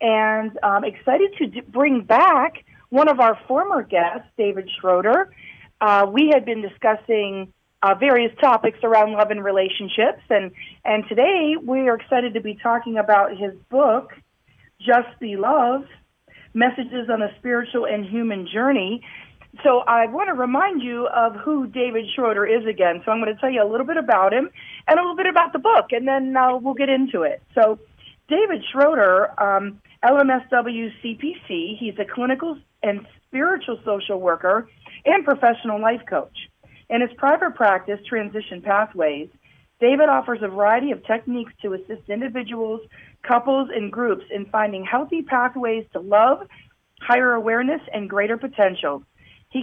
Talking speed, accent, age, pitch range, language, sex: 160 wpm, American, 40-59, 210-260 Hz, English, female